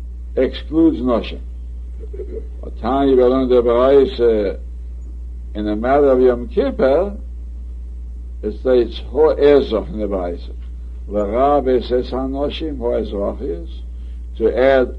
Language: English